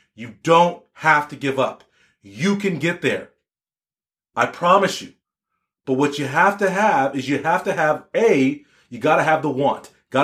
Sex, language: male, English